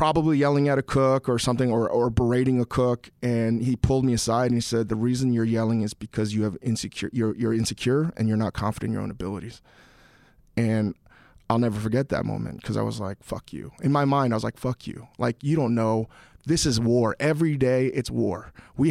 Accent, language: American, English